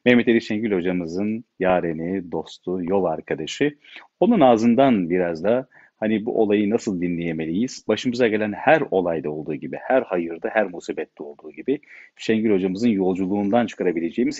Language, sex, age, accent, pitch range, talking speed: Turkish, male, 40-59, native, 95-145 Hz, 140 wpm